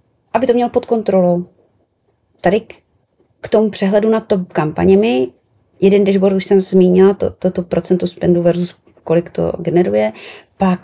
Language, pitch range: Czech, 155-195 Hz